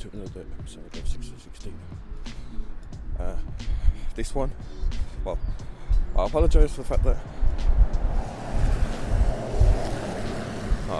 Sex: male